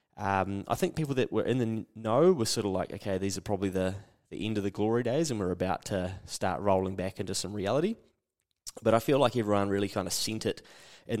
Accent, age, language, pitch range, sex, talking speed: Australian, 30-49, English, 100-130 Hz, male, 240 wpm